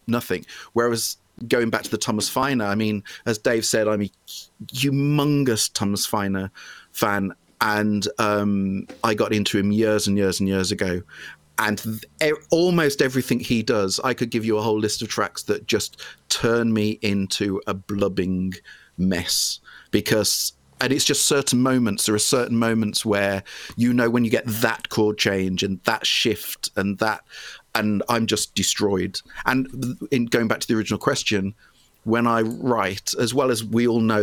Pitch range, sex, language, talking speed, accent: 100-120 Hz, male, English, 175 wpm, British